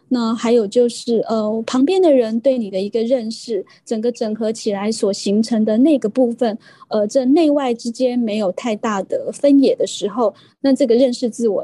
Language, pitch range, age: Chinese, 225-270 Hz, 20-39